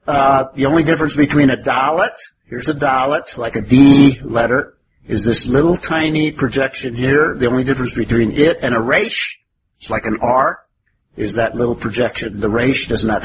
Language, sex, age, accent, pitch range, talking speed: English, male, 50-69, American, 115-150 Hz, 180 wpm